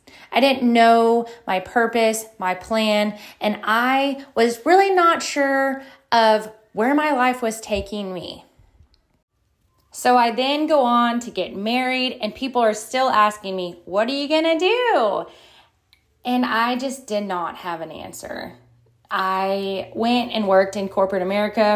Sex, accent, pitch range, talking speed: female, American, 190-250 Hz, 150 wpm